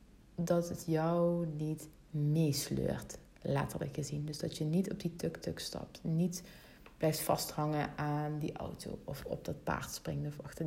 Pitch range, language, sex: 155-190 Hz, Dutch, female